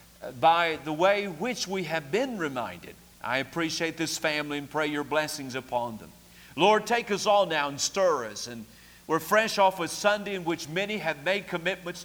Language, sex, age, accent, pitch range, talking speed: English, male, 50-69, American, 145-200 Hz, 190 wpm